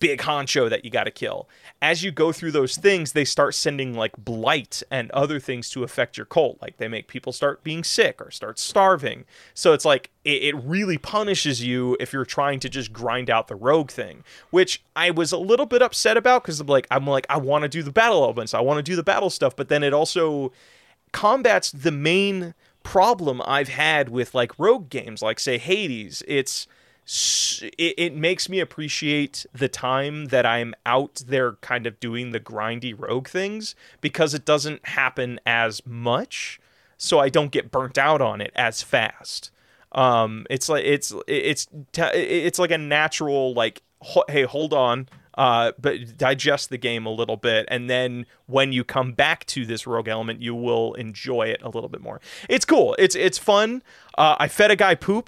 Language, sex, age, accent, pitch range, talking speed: English, male, 20-39, American, 125-175 Hz, 195 wpm